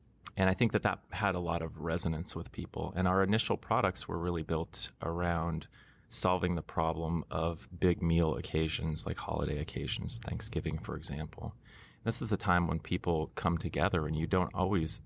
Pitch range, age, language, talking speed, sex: 80-95 Hz, 30-49, English, 180 wpm, male